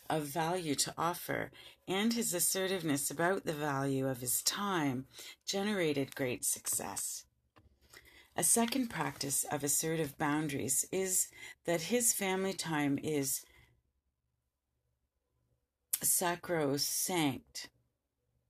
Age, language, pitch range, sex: 40-59, English, 125-170 Hz, female